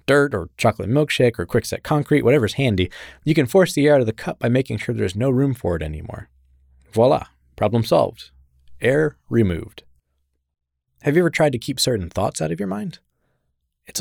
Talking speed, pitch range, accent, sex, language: 195 wpm, 85-120 Hz, American, male, English